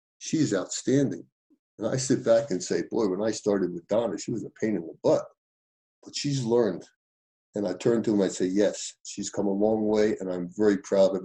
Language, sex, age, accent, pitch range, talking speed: English, male, 50-69, American, 95-145 Hz, 230 wpm